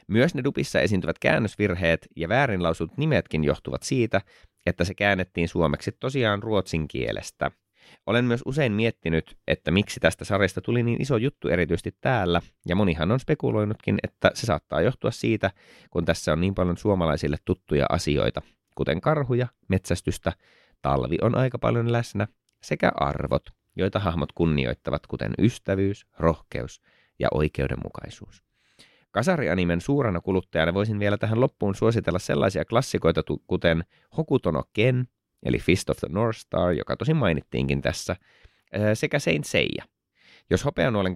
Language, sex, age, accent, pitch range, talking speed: Finnish, male, 30-49, native, 85-115 Hz, 135 wpm